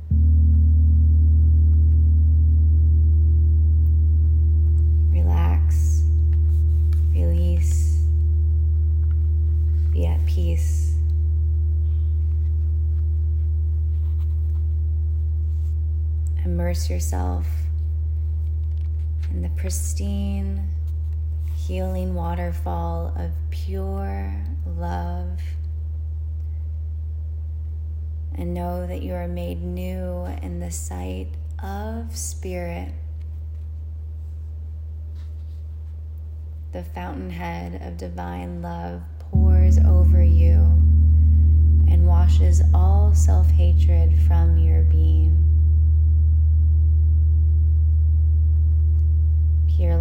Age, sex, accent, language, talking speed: 20-39, female, American, English, 50 wpm